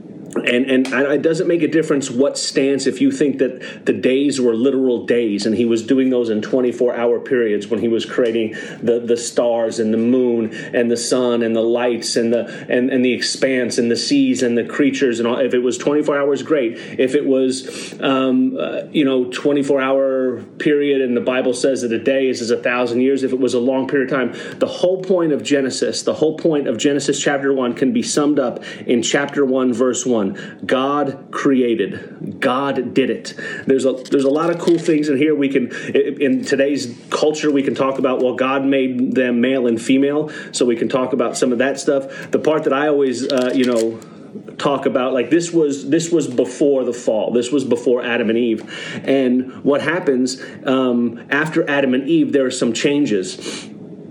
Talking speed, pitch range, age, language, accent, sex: 210 wpm, 120-140 Hz, 30-49, English, American, male